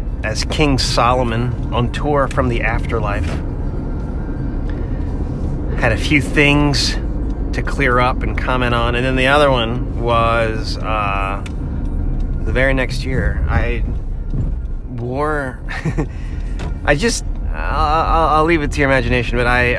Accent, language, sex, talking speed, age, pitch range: American, English, male, 130 wpm, 30-49, 95-125 Hz